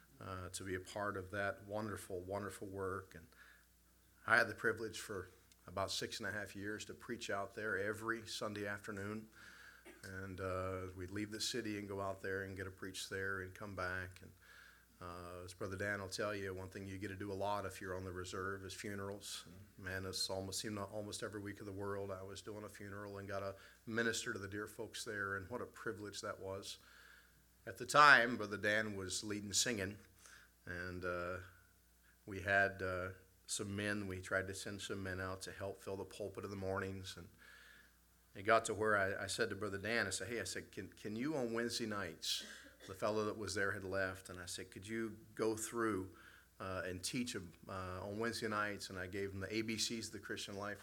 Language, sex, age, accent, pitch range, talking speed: English, male, 40-59, American, 95-105 Hz, 220 wpm